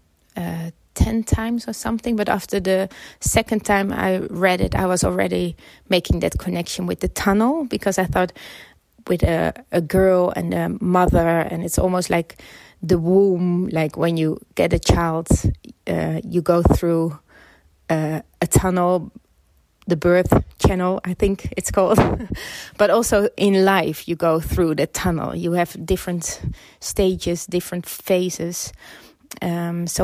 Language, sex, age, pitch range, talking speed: German, female, 20-39, 160-190 Hz, 150 wpm